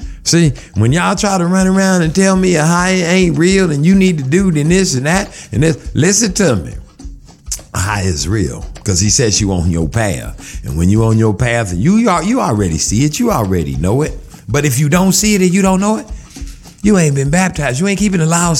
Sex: male